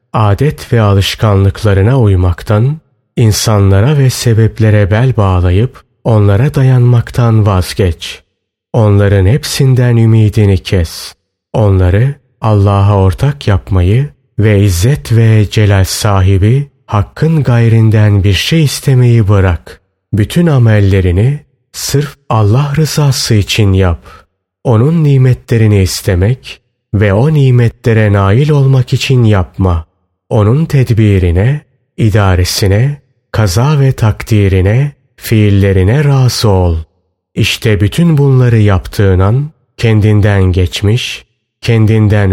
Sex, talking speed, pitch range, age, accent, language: male, 90 wpm, 100-130 Hz, 30-49, native, Turkish